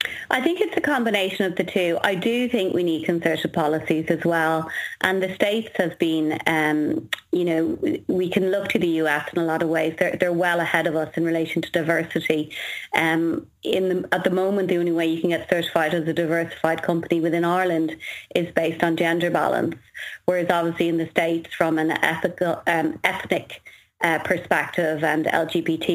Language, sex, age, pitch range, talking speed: English, female, 30-49, 165-185 Hz, 195 wpm